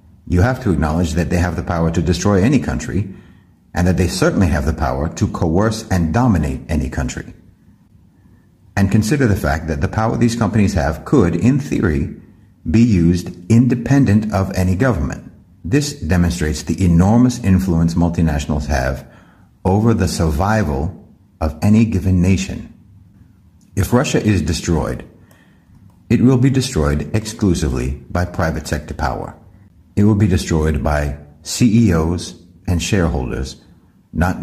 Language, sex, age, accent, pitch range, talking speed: English, male, 60-79, American, 85-105 Hz, 140 wpm